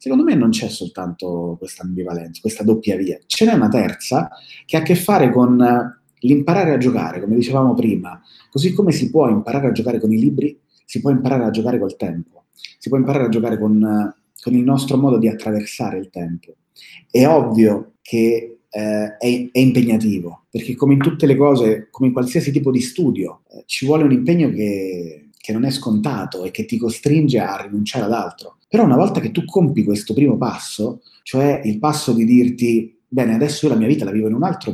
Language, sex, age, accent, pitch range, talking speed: Italian, male, 30-49, native, 110-145 Hz, 205 wpm